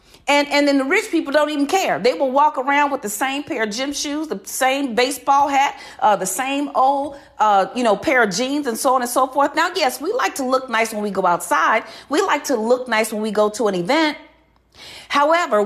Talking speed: 240 wpm